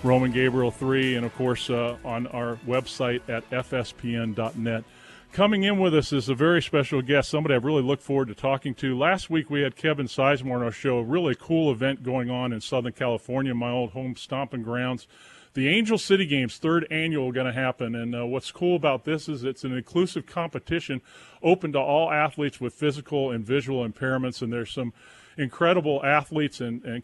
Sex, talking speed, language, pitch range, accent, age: male, 195 wpm, English, 125-150 Hz, American, 40-59